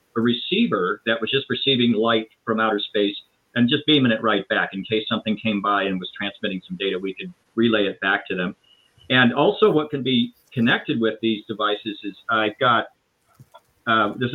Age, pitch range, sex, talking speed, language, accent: 50-69, 105-125 Hz, male, 195 wpm, English, American